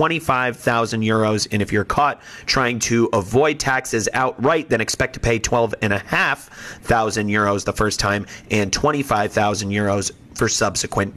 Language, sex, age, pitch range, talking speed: English, male, 30-49, 110-140 Hz, 135 wpm